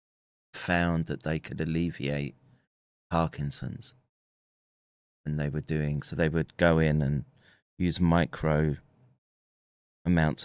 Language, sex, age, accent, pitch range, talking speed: English, male, 30-49, British, 70-90 Hz, 110 wpm